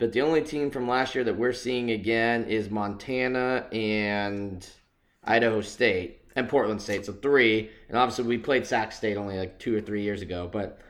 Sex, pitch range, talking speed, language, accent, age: male, 105-130 Hz, 195 wpm, English, American, 20-39